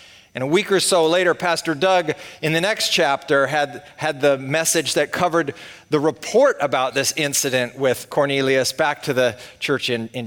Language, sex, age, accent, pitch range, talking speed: English, male, 40-59, American, 125-170 Hz, 180 wpm